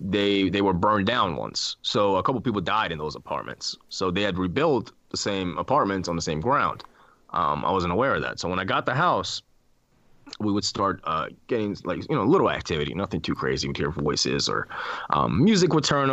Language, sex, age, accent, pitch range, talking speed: English, male, 20-39, American, 95-120 Hz, 225 wpm